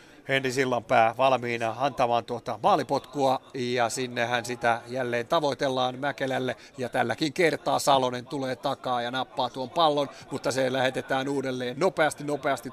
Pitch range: 130-145 Hz